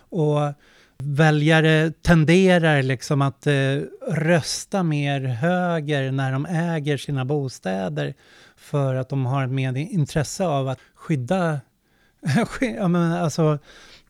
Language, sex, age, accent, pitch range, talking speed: Swedish, male, 30-49, native, 140-170 Hz, 105 wpm